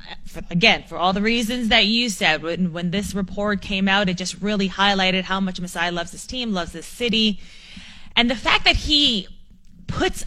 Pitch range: 170-215 Hz